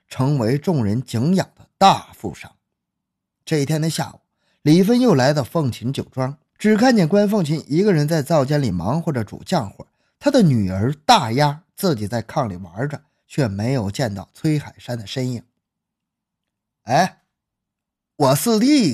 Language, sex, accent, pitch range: Chinese, male, native, 130-220 Hz